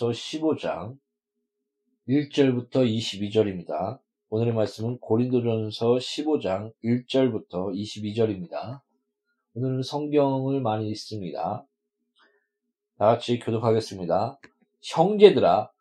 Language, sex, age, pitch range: Korean, male, 40-59, 130-185 Hz